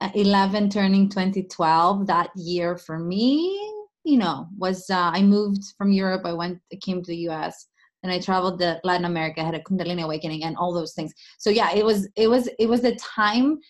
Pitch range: 170-205 Hz